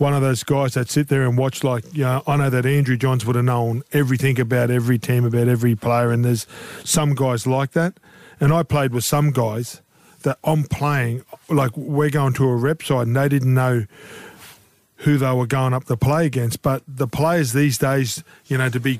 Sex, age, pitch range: male, 40-59, 125-145 Hz